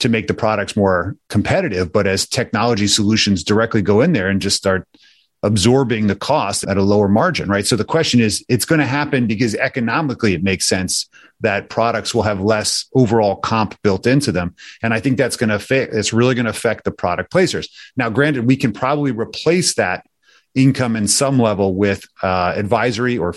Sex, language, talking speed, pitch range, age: male, English, 195 wpm, 100-130 Hz, 30-49